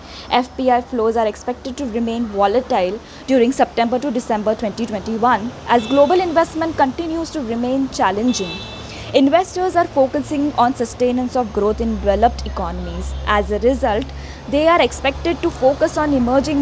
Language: English